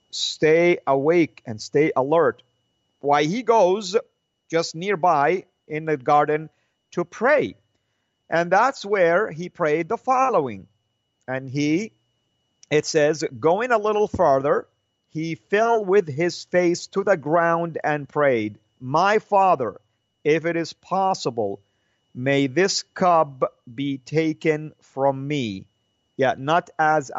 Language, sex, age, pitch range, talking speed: English, male, 50-69, 130-180 Hz, 125 wpm